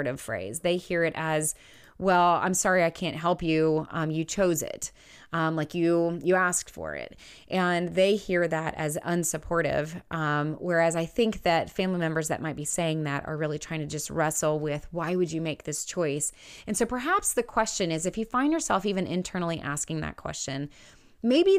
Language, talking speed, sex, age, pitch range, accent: English, 195 wpm, female, 20-39, 155-190 Hz, American